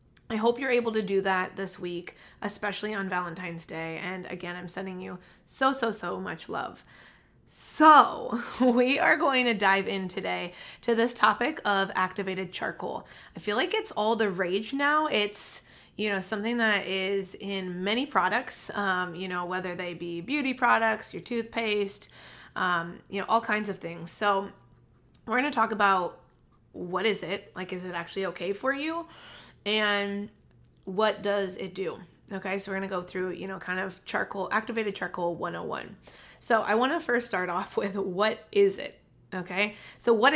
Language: English